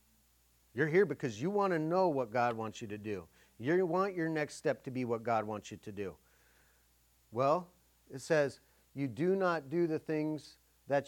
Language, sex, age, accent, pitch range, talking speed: English, male, 40-59, American, 115-150 Hz, 195 wpm